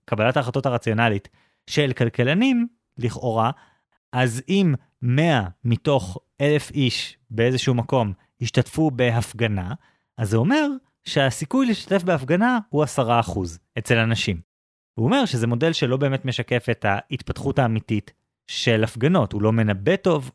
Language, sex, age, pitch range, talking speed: Hebrew, male, 20-39, 115-155 Hz, 125 wpm